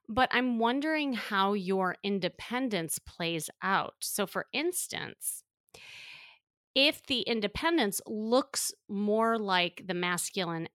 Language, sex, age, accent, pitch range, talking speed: English, female, 30-49, American, 185-235 Hz, 105 wpm